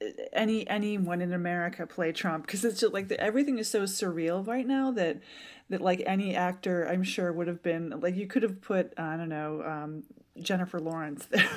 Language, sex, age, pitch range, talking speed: English, female, 30-49, 170-215 Hz, 195 wpm